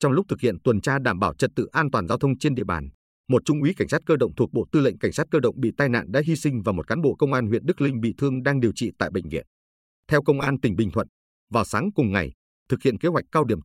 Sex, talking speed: male, 310 wpm